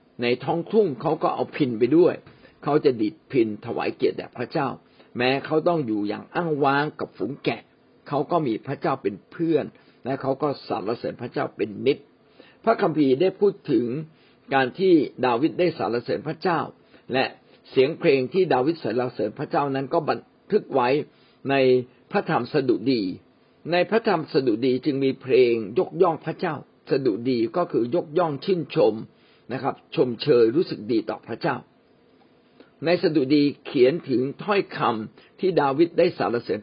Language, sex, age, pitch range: Thai, male, 60-79, 135-205 Hz